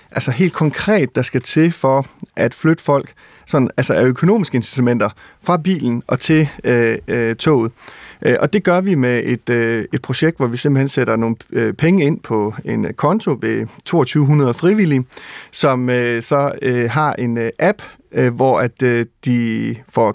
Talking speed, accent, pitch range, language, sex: 170 wpm, native, 120-160 Hz, Danish, male